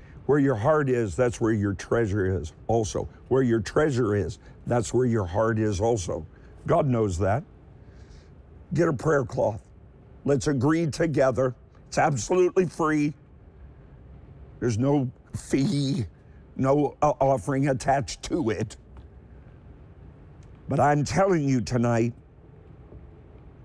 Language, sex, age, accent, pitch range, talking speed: English, male, 50-69, American, 105-165 Hz, 115 wpm